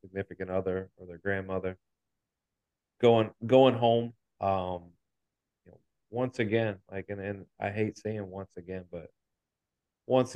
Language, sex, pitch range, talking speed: English, male, 90-105 Hz, 135 wpm